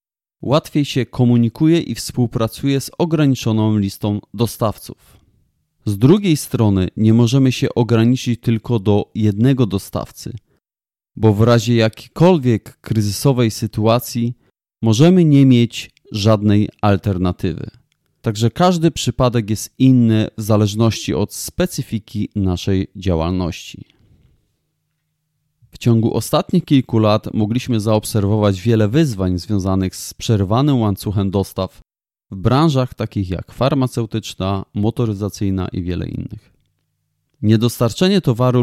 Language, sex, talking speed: Polish, male, 105 wpm